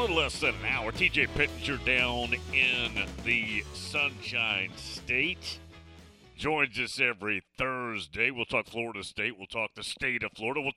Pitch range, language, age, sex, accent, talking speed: 95-150 Hz, English, 40-59, male, American, 150 wpm